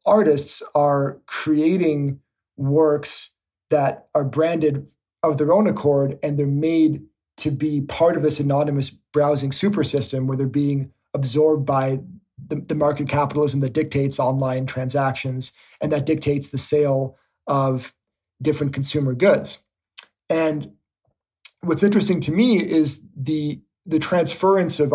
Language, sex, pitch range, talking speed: English, male, 140-160 Hz, 130 wpm